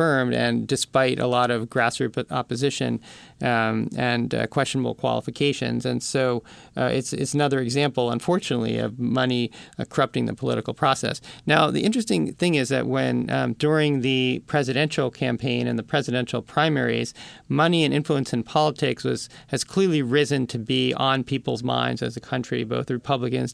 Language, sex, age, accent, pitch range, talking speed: English, male, 40-59, American, 120-145 Hz, 160 wpm